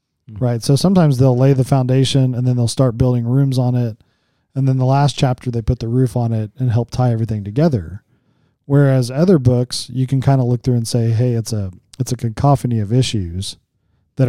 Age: 40-59